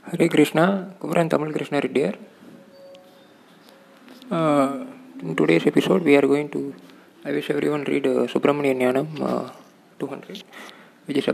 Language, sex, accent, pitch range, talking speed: Tamil, male, native, 135-185 Hz, 170 wpm